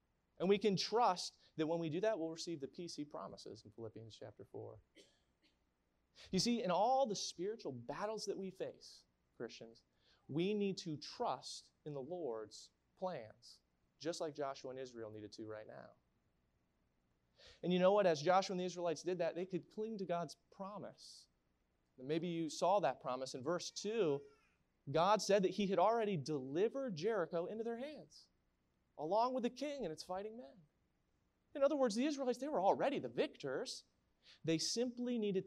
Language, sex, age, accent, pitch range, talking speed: English, male, 30-49, American, 110-185 Hz, 175 wpm